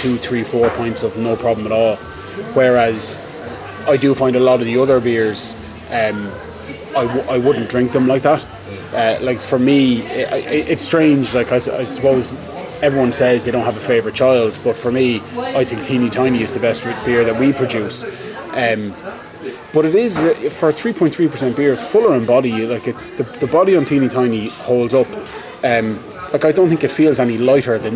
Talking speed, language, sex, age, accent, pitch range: 195 wpm, English, male, 20-39, Irish, 115-140 Hz